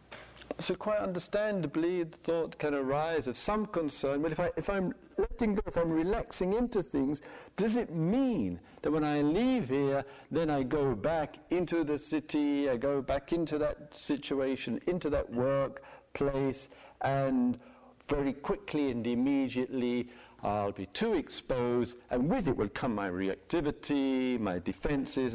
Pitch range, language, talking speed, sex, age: 125-200 Hz, English, 150 wpm, male, 50-69